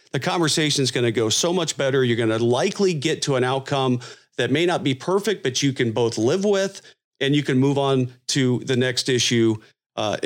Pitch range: 120-155 Hz